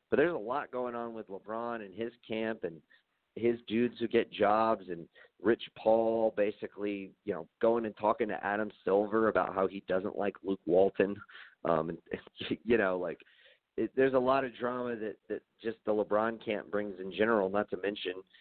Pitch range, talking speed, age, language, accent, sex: 95-110 Hz, 190 wpm, 40-59, English, American, male